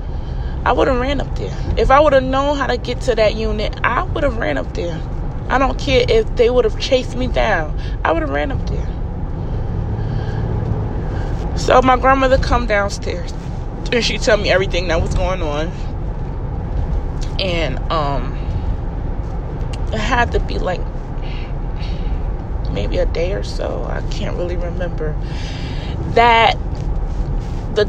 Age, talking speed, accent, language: 20-39, 155 wpm, American, English